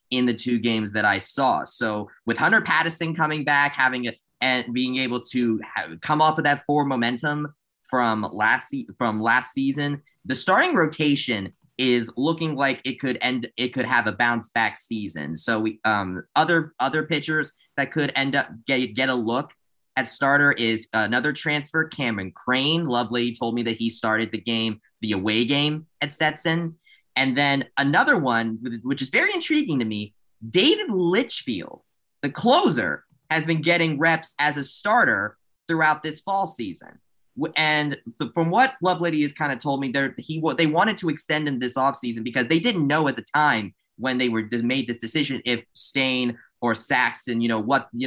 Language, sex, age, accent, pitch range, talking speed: English, male, 20-39, American, 120-155 Hz, 180 wpm